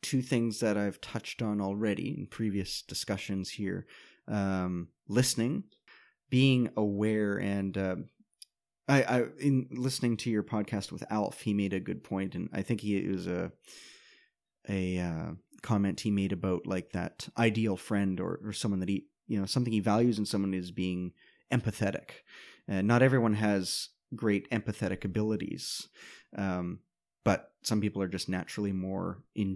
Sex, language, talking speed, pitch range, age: male, English, 165 wpm, 95-120 Hz, 30-49